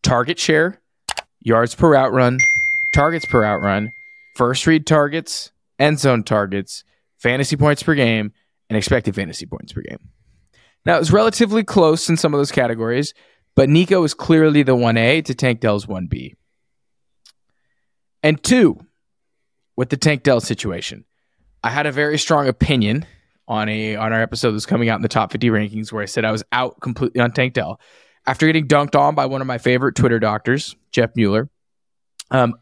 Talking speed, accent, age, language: 175 wpm, American, 20-39, English